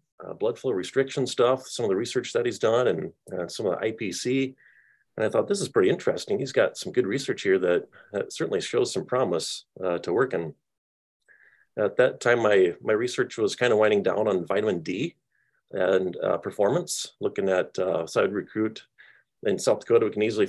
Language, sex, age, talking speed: English, male, 30-49, 205 wpm